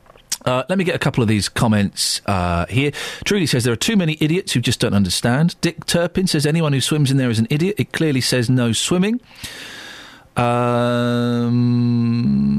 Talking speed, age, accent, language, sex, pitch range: 185 wpm, 40-59, British, English, male, 110-150 Hz